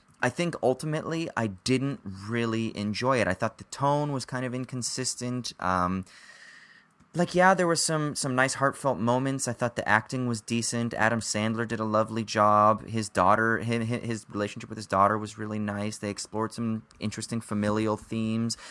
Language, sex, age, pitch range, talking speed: English, male, 30-49, 105-130 Hz, 175 wpm